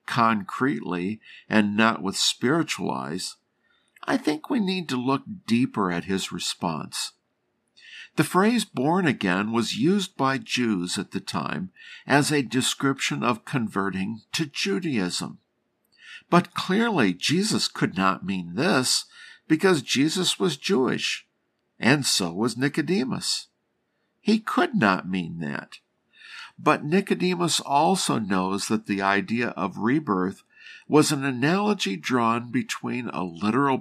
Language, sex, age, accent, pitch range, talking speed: English, male, 60-79, American, 105-180 Hz, 125 wpm